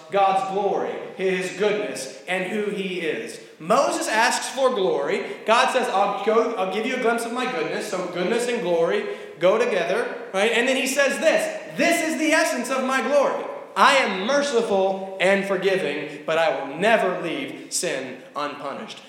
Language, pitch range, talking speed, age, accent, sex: English, 180-270 Hz, 170 wpm, 20-39, American, male